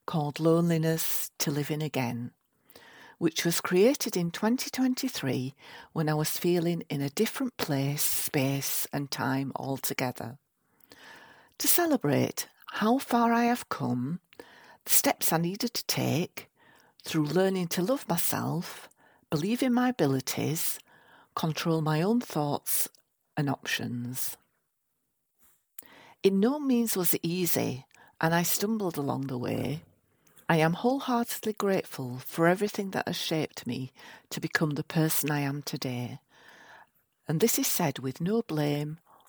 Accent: British